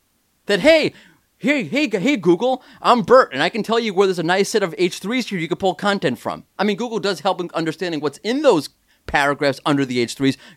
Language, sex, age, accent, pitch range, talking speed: English, male, 30-49, American, 155-210 Hz, 225 wpm